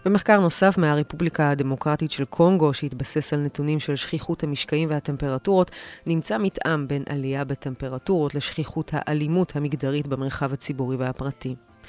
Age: 30-49